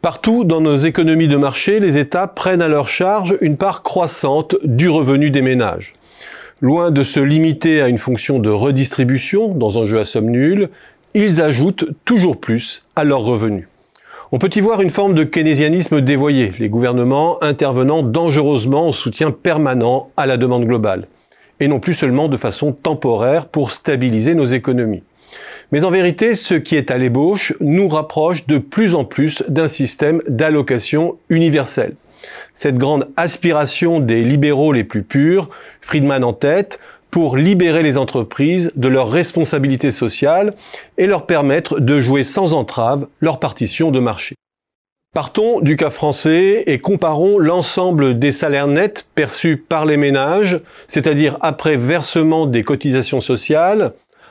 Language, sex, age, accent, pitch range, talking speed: French, male, 40-59, French, 135-165 Hz, 155 wpm